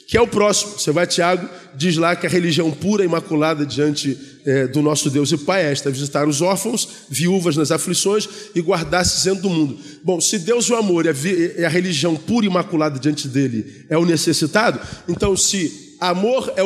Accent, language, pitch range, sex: Brazilian, Portuguese, 160-235 Hz, male